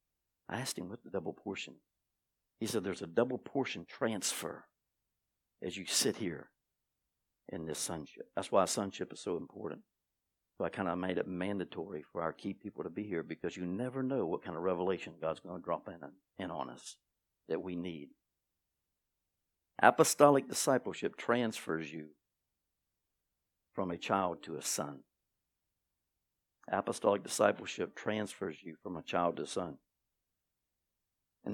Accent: American